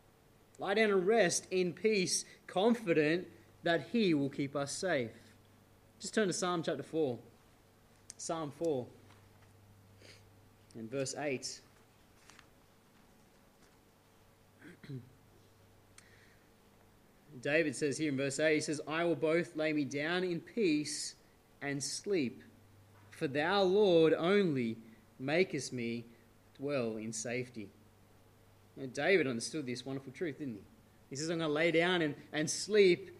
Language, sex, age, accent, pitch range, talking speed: English, male, 20-39, Australian, 110-170 Hz, 125 wpm